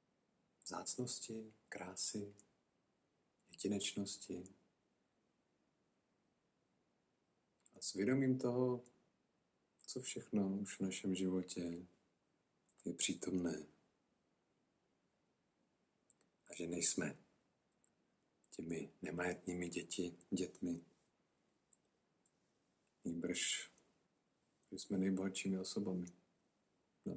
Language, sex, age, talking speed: Czech, male, 50-69, 60 wpm